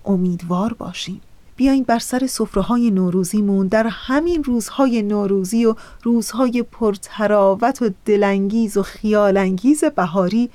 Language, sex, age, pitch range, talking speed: Persian, female, 30-49, 195-245 Hz, 110 wpm